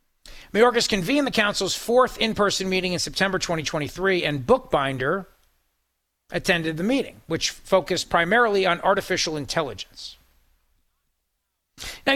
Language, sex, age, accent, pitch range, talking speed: English, male, 40-59, American, 155-215 Hz, 110 wpm